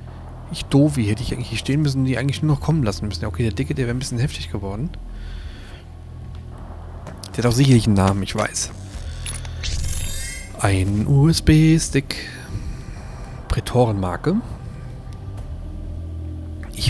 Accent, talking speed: German, 135 wpm